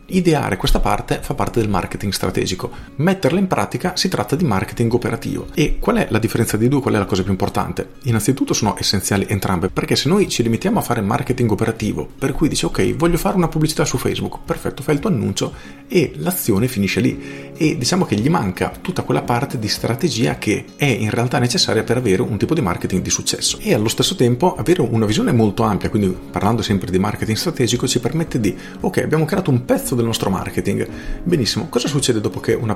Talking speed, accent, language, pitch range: 215 wpm, native, Italian, 100-135 Hz